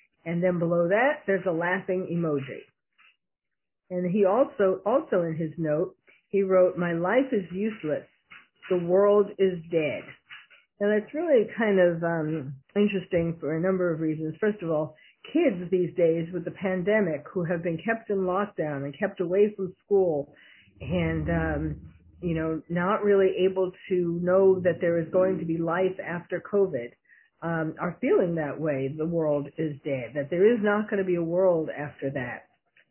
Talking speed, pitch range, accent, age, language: 175 wpm, 165-200 Hz, American, 50-69, English